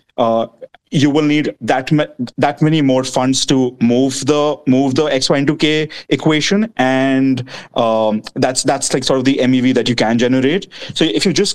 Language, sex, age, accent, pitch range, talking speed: English, male, 30-49, Indian, 130-150 Hz, 180 wpm